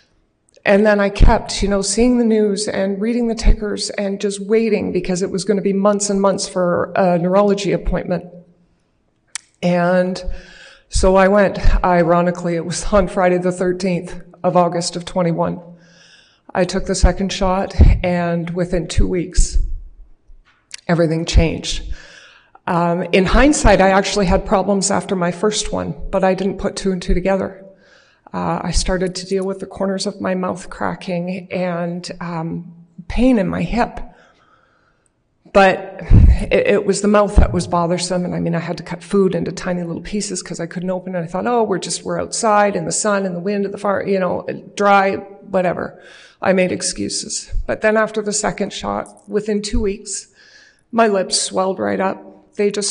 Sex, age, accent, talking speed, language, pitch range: female, 40-59, American, 180 wpm, English, 180-200 Hz